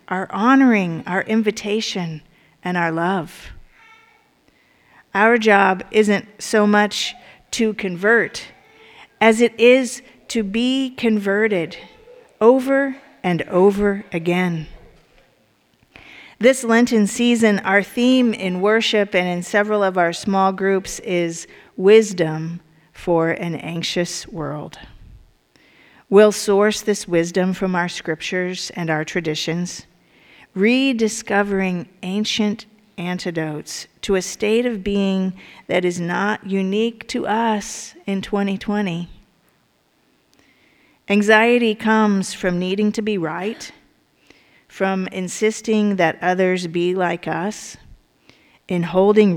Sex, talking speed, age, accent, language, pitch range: female, 105 wpm, 50-69, American, English, 180-220 Hz